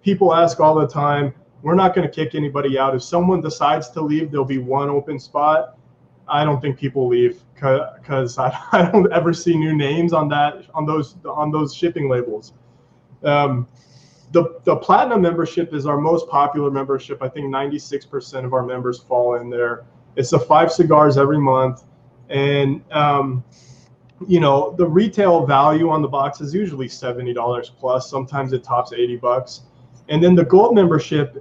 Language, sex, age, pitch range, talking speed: English, male, 20-39, 130-165 Hz, 175 wpm